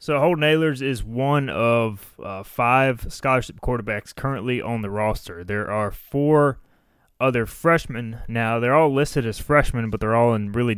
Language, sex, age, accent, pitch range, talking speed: English, male, 20-39, American, 105-130 Hz, 165 wpm